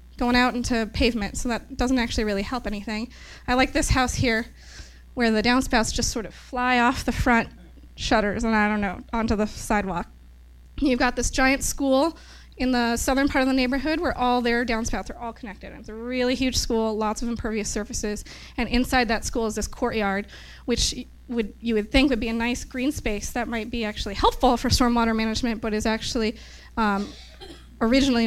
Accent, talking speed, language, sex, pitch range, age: American, 200 wpm, English, female, 220-255 Hz, 20-39